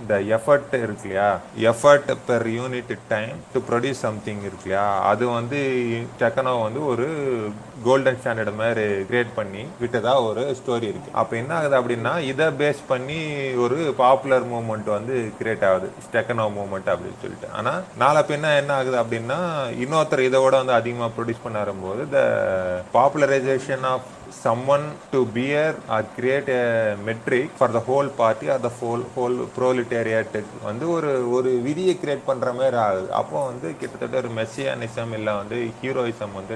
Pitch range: 110-130 Hz